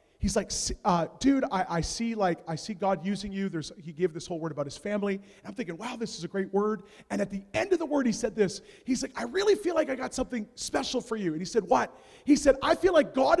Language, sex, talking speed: English, male, 280 wpm